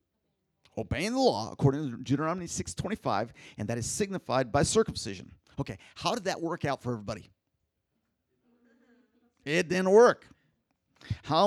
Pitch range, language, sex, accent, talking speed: 115-165 Hz, English, male, American, 130 wpm